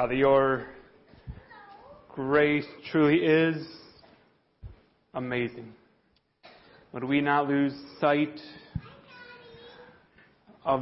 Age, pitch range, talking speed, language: 30-49, 120-150 Hz, 65 wpm, English